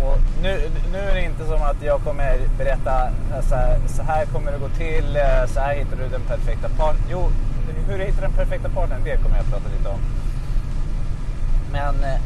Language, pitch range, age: Swedish, 115-130 Hz, 30-49